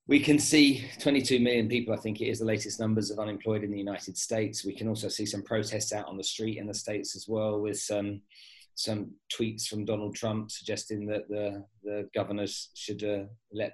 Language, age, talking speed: English, 20-39, 215 wpm